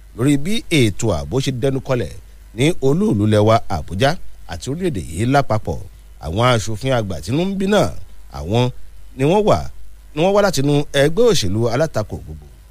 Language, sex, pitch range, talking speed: English, male, 95-150 Hz, 140 wpm